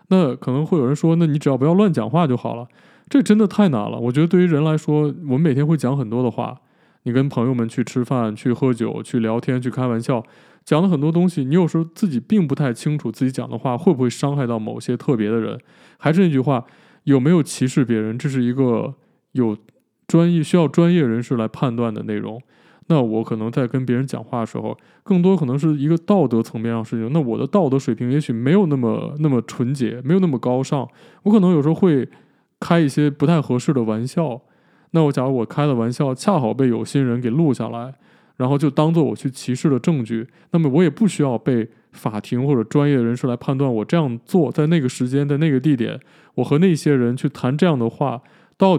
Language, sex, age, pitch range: Chinese, male, 20-39, 120-160 Hz